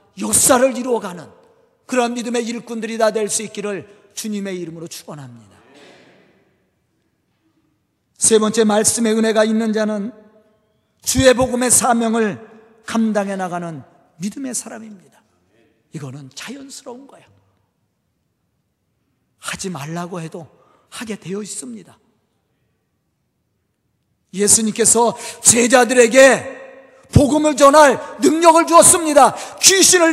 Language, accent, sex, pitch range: Korean, native, male, 195-270 Hz